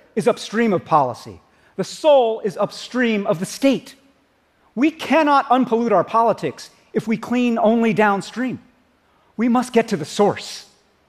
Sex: male